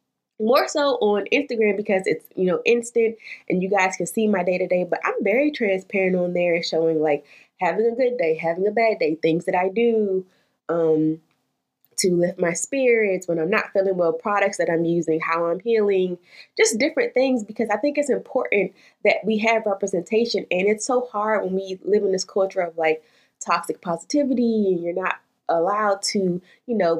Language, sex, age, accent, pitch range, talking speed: English, female, 20-39, American, 175-235 Hz, 190 wpm